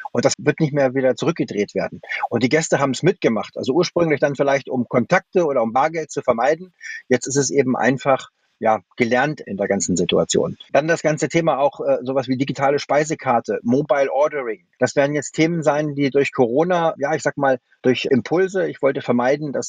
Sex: male